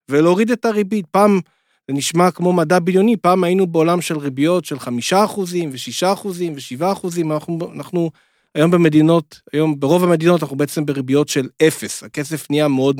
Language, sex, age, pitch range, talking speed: Hebrew, male, 40-59, 135-175 Hz, 165 wpm